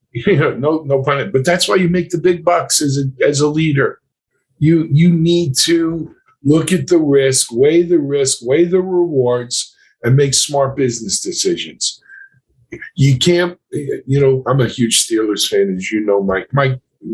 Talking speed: 180 wpm